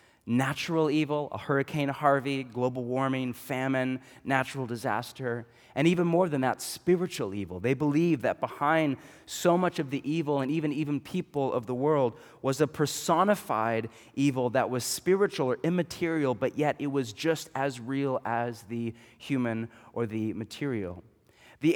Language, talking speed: English, 155 wpm